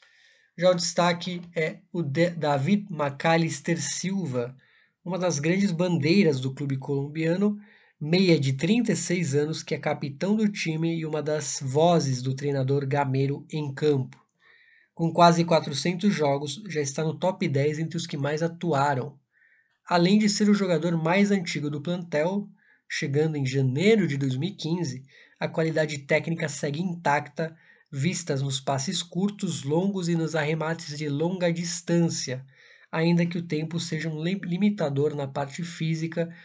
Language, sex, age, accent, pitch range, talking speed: Portuguese, male, 20-39, Brazilian, 145-175 Hz, 145 wpm